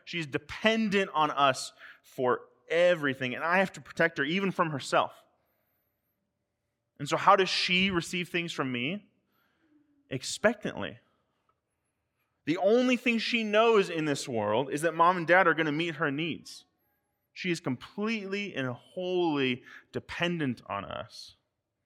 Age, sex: 30-49, male